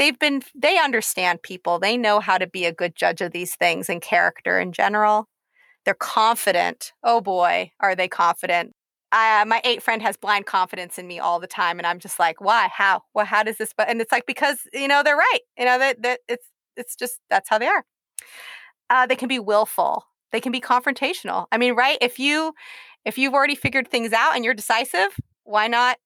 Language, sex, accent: English, female, American